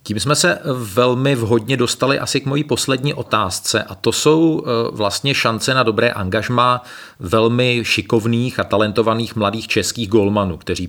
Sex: male